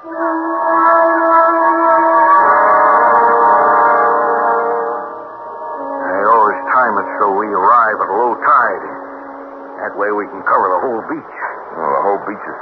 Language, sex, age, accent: English, male, 60-79, American